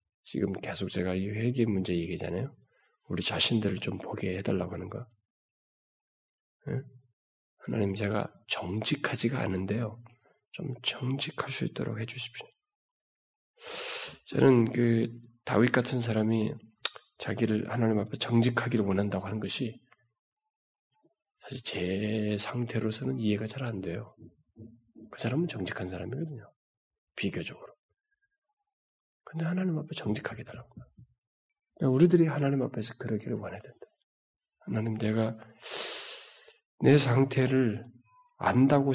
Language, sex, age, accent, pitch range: Korean, male, 20-39, native, 110-170 Hz